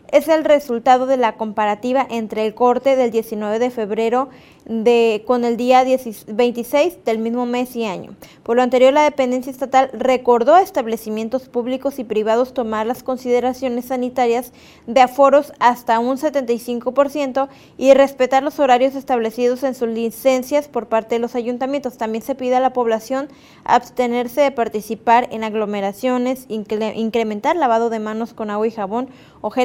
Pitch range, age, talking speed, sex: 230-270 Hz, 20-39, 160 wpm, female